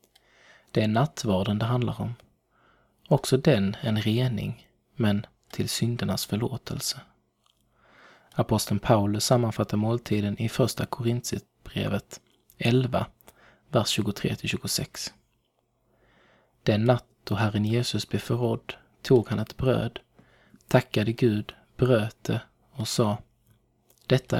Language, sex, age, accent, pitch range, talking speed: Swedish, male, 20-39, native, 105-120 Hz, 105 wpm